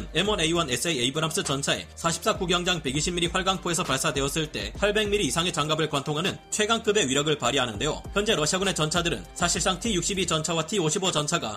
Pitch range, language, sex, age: 150-185 Hz, Korean, male, 30-49